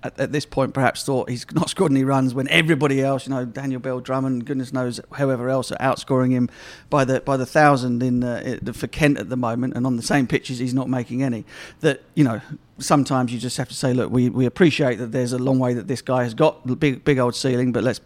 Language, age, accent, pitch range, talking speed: English, 50-69, British, 125-145 Hz, 255 wpm